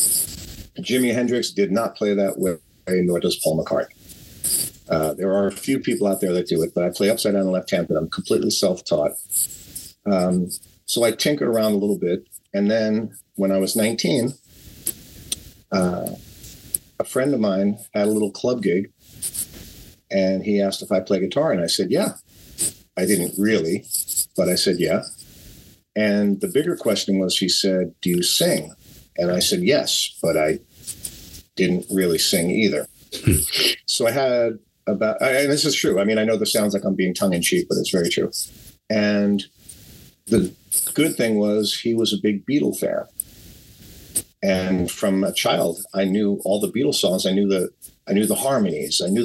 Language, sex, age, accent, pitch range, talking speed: English, male, 50-69, American, 95-110 Hz, 185 wpm